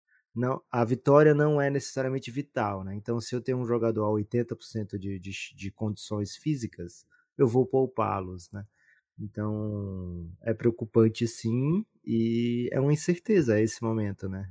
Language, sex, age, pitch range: Portuguese, male, 20-39, 105-140 Hz